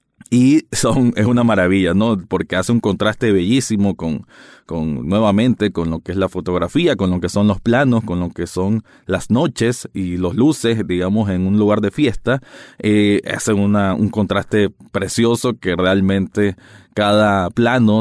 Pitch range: 100-140 Hz